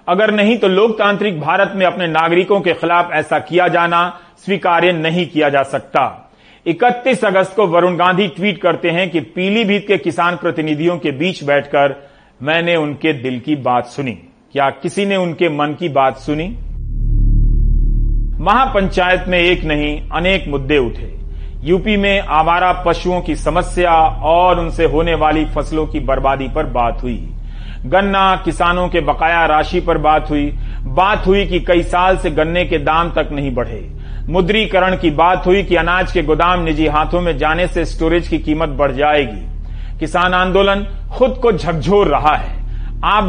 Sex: male